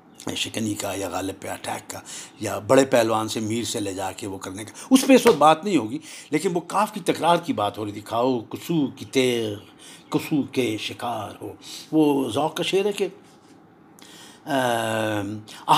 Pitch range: 120-200 Hz